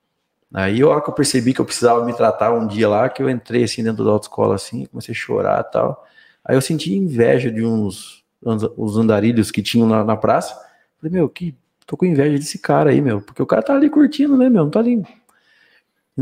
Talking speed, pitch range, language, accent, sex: 235 wpm, 110-150 Hz, Portuguese, Brazilian, male